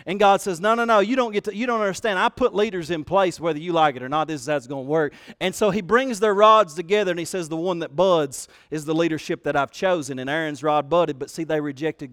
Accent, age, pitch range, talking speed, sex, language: American, 40-59, 150-205 Hz, 290 wpm, male, English